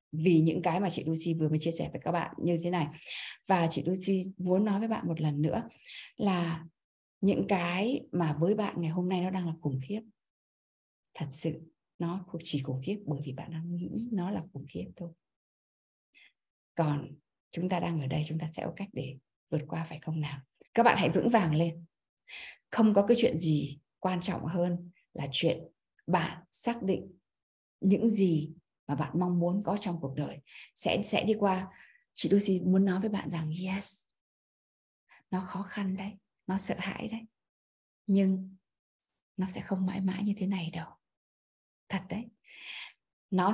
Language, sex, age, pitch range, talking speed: Vietnamese, female, 20-39, 160-195 Hz, 185 wpm